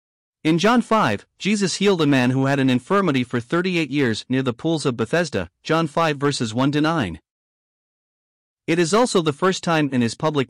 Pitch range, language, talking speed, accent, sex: 125-165 Hz, English, 185 wpm, American, male